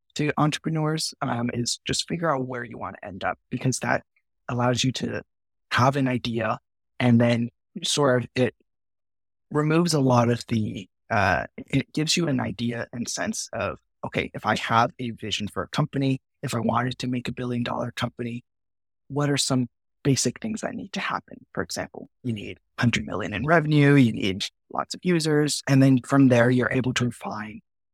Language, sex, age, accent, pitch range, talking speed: English, male, 20-39, American, 110-140 Hz, 185 wpm